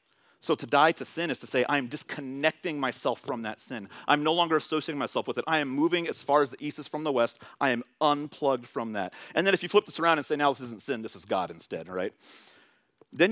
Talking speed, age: 255 wpm, 40-59